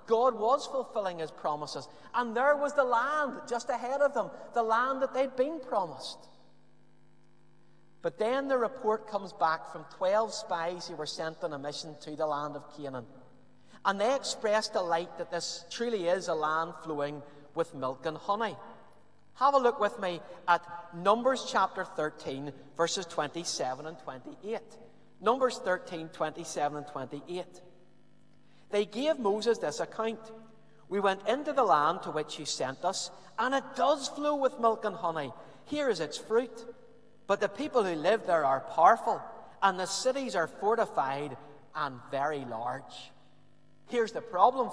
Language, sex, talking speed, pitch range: English, male, 160 wpm, 155-230 Hz